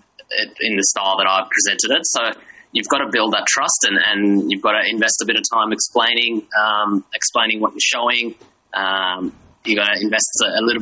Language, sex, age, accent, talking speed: English, male, 20-39, Australian, 210 wpm